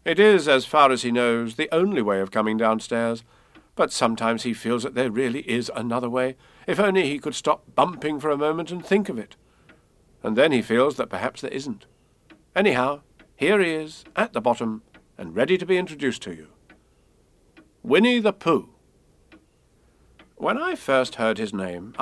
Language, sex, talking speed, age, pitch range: English, male, 185 wpm, 50-69, 115-185 Hz